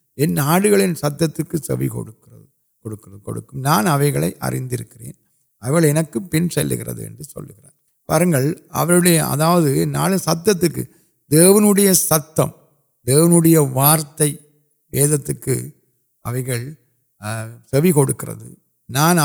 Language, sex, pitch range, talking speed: Urdu, male, 130-170 Hz, 55 wpm